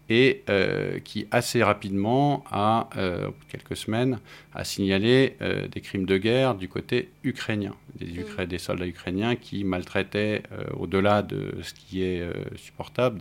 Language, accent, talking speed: French, French, 155 wpm